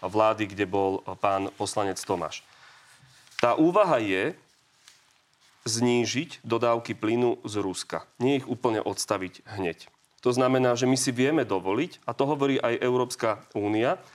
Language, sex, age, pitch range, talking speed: Slovak, male, 30-49, 115-135 Hz, 135 wpm